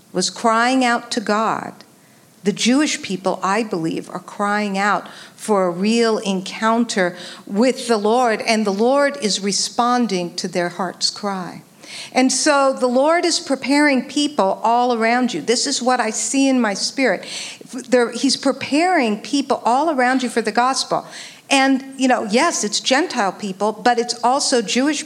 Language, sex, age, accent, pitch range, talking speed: English, female, 50-69, American, 205-265 Hz, 160 wpm